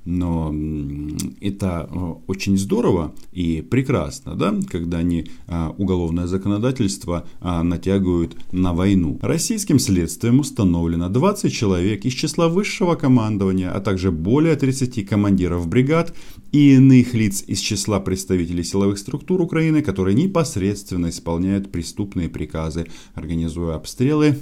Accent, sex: native, male